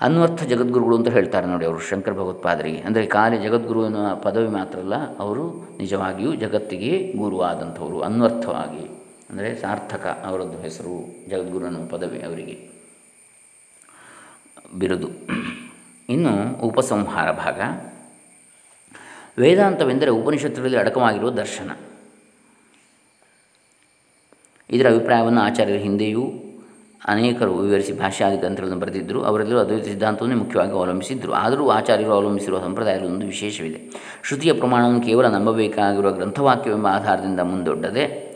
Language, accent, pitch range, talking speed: Kannada, native, 95-115 Hz, 95 wpm